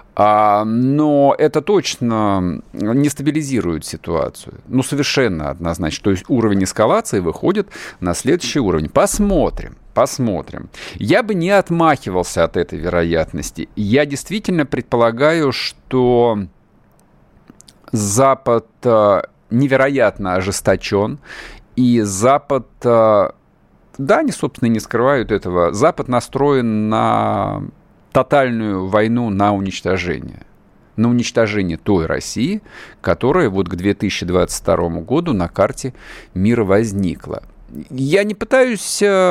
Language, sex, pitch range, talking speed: Russian, male, 100-140 Hz, 100 wpm